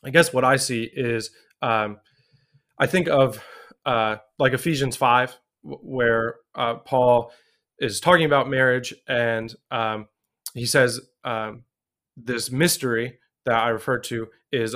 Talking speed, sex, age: 135 wpm, male, 20-39